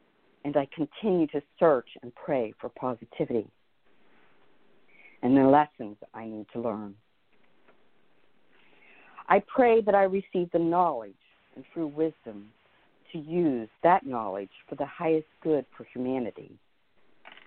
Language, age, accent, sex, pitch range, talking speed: English, 50-69, American, female, 130-180 Hz, 125 wpm